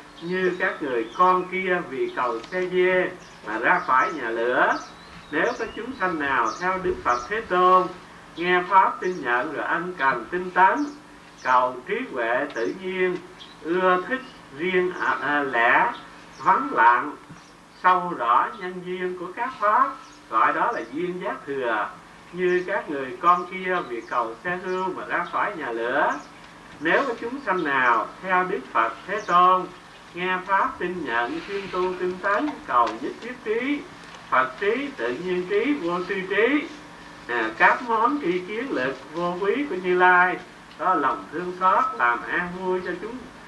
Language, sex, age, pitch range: Vietnamese, male, 50-69, 155-185 Hz